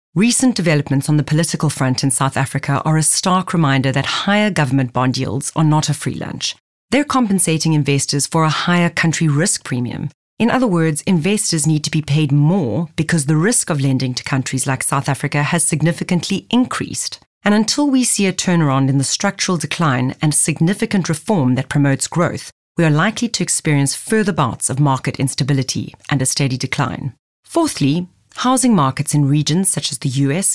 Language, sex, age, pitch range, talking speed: English, female, 30-49, 135-180 Hz, 185 wpm